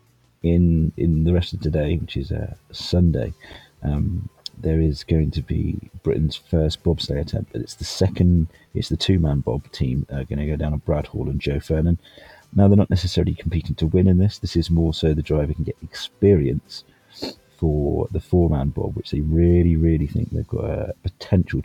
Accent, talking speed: British, 195 wpm